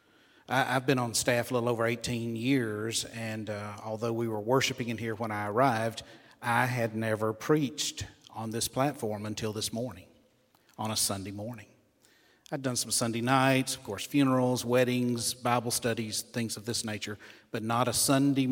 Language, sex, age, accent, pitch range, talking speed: English, male, 40-59, American, 105-125 Hz, 170 wpm